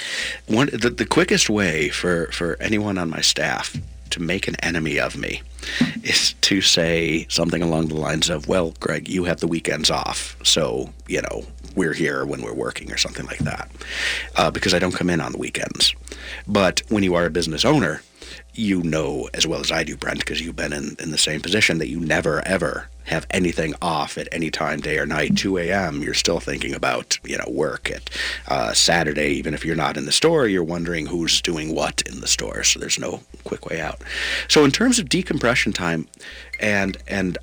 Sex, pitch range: male, 75-105 Hz